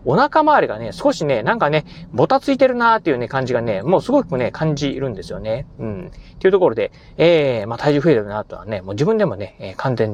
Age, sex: 30-49, male